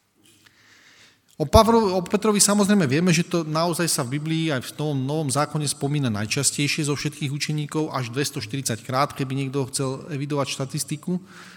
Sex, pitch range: male, 130-170 Hz